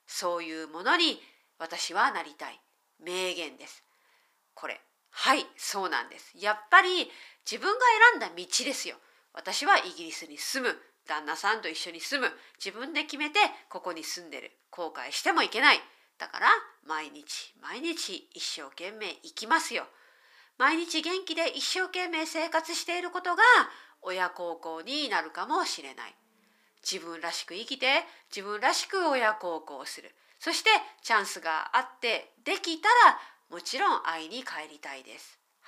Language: Japanese